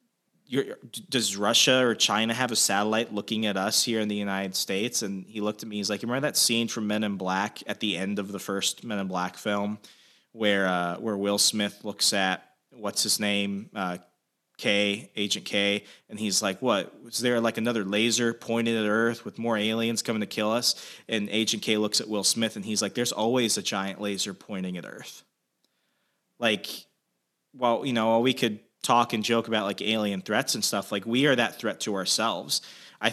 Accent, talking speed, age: American, 210 wpm, 20-39